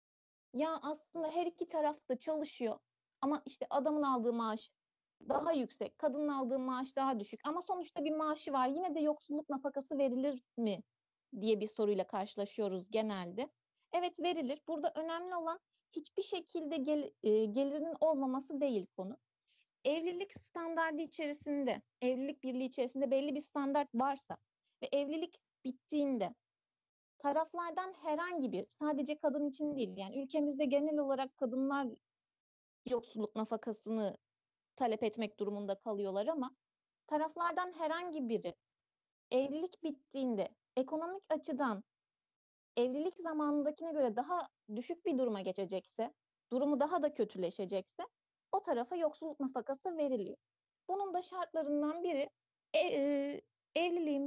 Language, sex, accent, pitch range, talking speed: Turkish, female, native, 240-315 Hz, 120 wpm